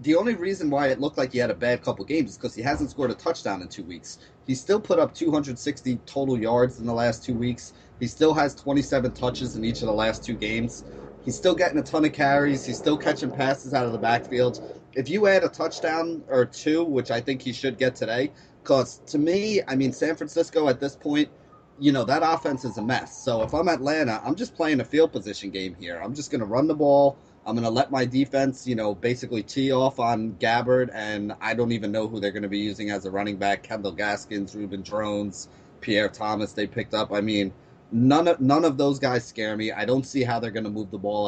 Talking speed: 245 wpm